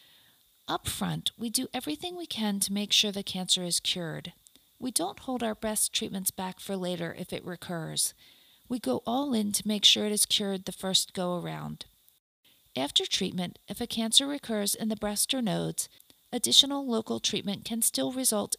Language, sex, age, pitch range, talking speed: English, female, 40-59, 185-240 Hz, 185 wpm